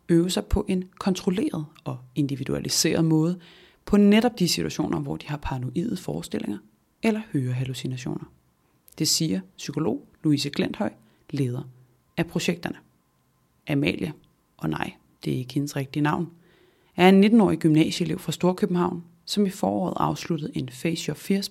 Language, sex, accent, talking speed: Danish, female, native, 140 wpm